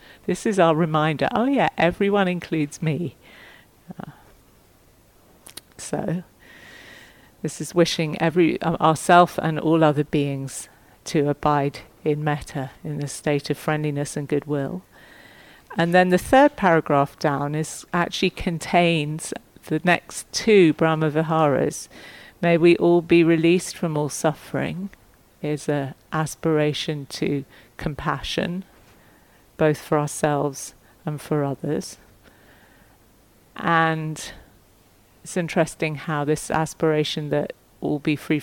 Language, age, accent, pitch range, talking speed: English, 50-69, British, 145-170 Hz, 115 wpm